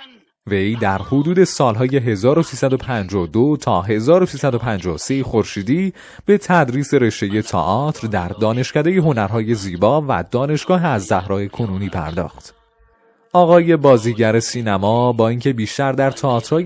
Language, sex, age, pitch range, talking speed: Persian, male, 30-49, 105-150 Hz, 105 wpm